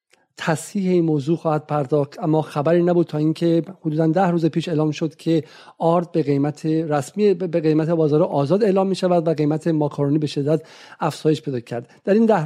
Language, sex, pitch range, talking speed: Persian, male, 150-175 Hz, 190 wpm